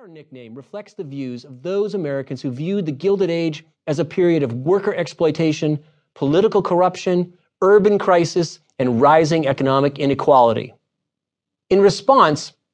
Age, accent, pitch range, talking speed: 30-49, American, 140-185 Hz, 130 wpm